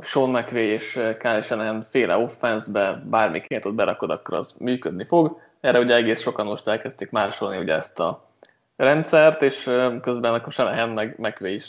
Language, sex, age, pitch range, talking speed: Hungarian, male, 20-39, 110-135 Hz, 145 wpm